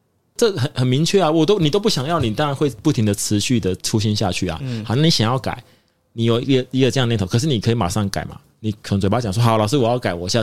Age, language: 20-39, Chinese